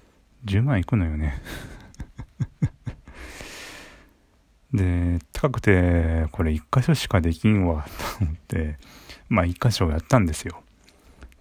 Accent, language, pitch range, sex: native, Japanese, 85-140 Hz, male